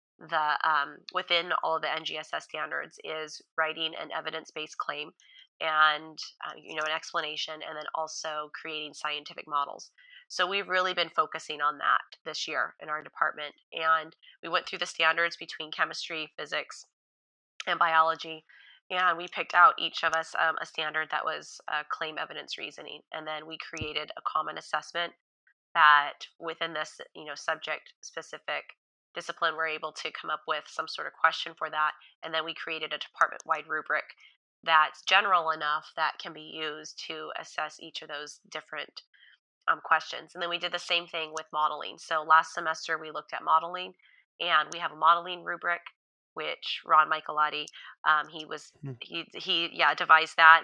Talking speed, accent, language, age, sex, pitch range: 170 wpm, American, English, 20-39, female, 155-170 Hz